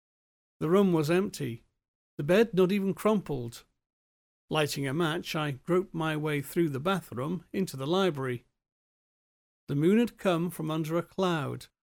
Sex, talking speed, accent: male, 150 wpm, British